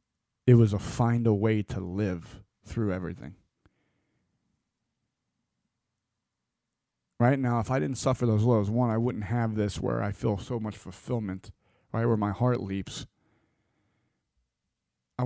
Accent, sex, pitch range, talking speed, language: American, male, 110-135 Hz, 140 wpm, English